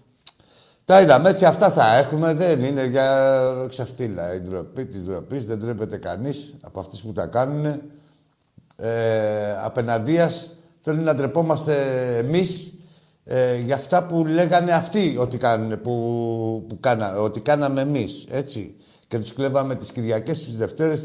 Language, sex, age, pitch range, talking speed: Greek, male, 50-69, 110-145 Hz, 145 wpm